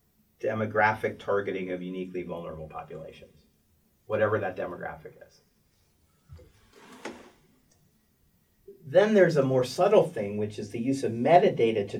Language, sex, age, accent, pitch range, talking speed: English, male, 40-59, American, 110-145 Hz, 115 wpm